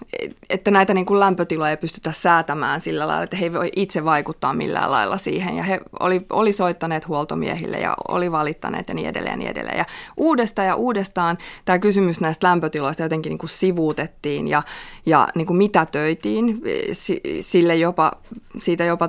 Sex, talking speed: female, 165 wpm